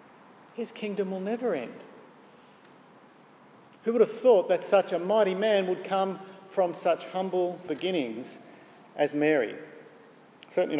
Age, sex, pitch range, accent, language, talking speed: 50-69, male, 150-190 Hz, Australian, English, 130 wpm